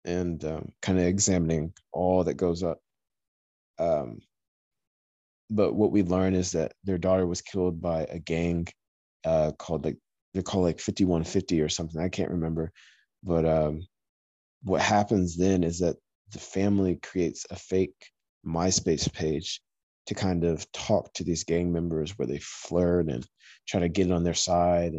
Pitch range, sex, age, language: 80-100 Hz, male, 20-39, English